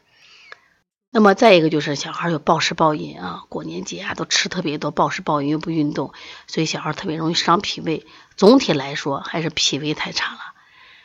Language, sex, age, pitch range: Chinese, female, 30-49, 155-205 Hz